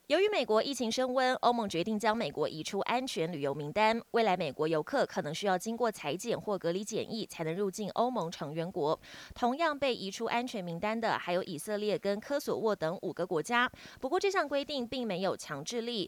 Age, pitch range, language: 20-39, 180-240 Hz, Chinese